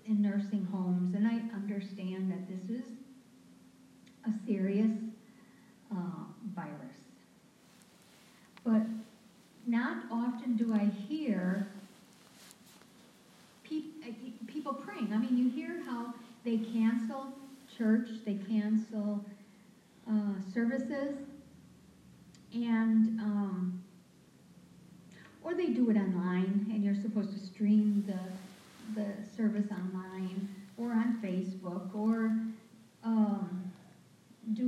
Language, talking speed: English, 95 wpm